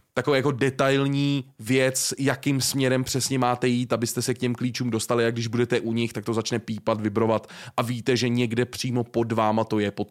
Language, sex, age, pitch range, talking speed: Czech, male, 20-39, 110-125 Hz, 210 wpm